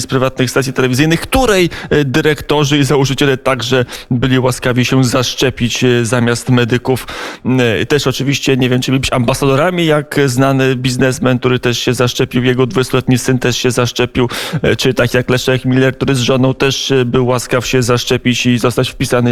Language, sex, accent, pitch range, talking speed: Polish, male, native, 125-140 Hz, 160 wpm